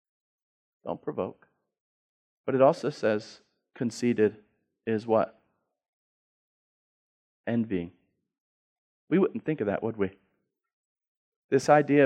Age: 30-49